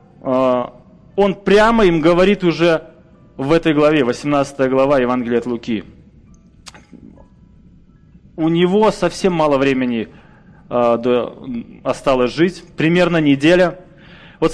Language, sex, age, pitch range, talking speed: Russian, male, 20-39, 145-190 Hz, 95 wpm